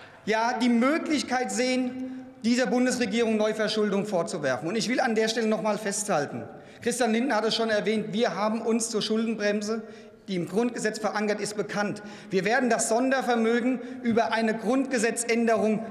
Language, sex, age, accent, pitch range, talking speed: German, male, 40-59, German, 220-255 Hz, 145 wpm